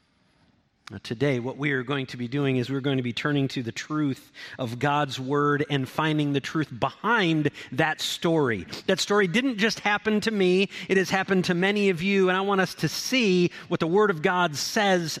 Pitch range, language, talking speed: 125-180 Hz, English, 210 wpm